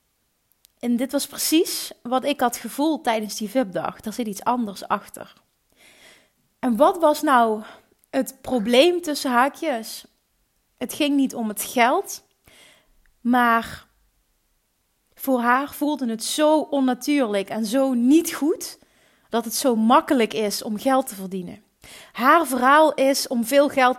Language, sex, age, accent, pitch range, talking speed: Dutch, female, 30-49, Dutch, 220-275 Hz, 140 wpm